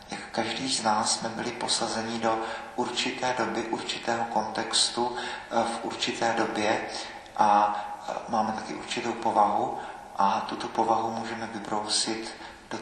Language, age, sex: Czech, 40-59, male